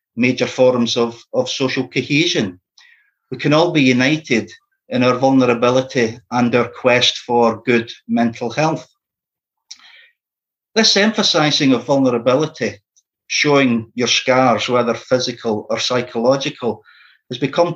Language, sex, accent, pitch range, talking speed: English, male, British, 120-145 Hz, 115 wpm